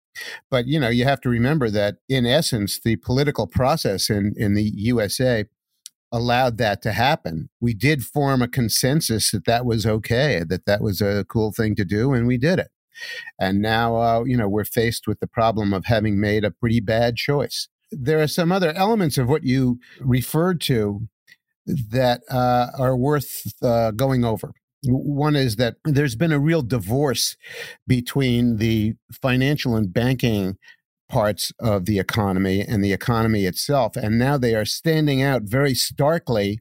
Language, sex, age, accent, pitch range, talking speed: English, male, 50-69, American, 110-140 Hz, 170 wpm